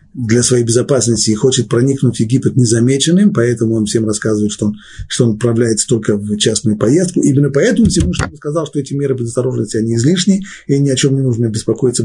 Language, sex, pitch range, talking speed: Russian, male, 110-145 Hz, 200 wpm